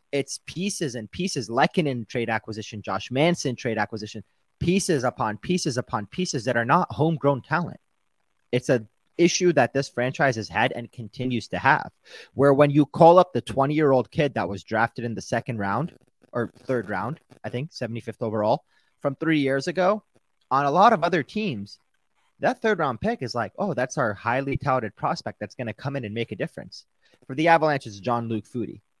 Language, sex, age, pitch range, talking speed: English, male, 30-49, 110-145 Hz, 195 wpm